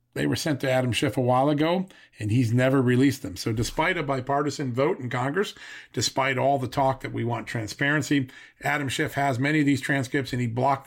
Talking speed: 215 wpm